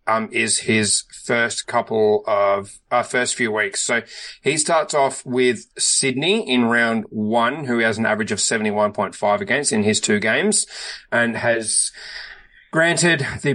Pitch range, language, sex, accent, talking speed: 110-140 Hz, English, male, Australian, 150 wpm